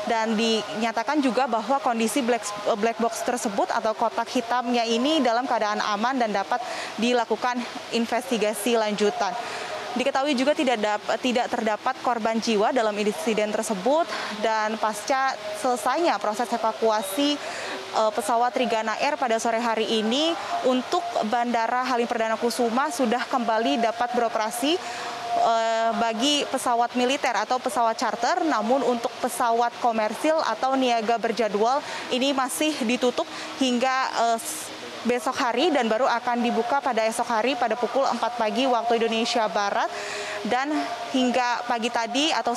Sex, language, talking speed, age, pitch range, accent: female, Indonesian, 125 wpm, 20-39, 230-260 Hz, native